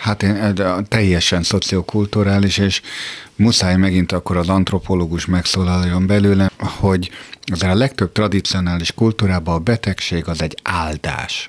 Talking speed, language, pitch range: 120 wpm, Hungarian, 85-105 Hz